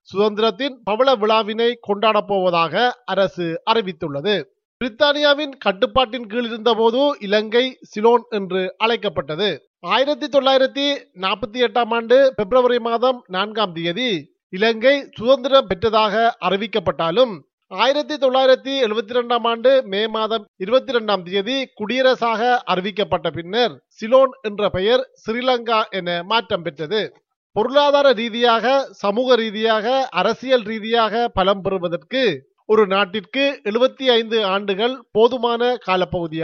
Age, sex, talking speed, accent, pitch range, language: 30-49, male, 95 wpm, native, 200-255 Hz, Tamil